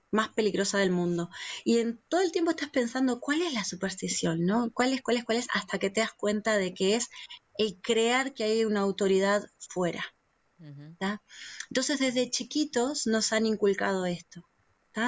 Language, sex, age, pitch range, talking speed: Spanish, female, 20-39, 195-250 Hz, 185 wpm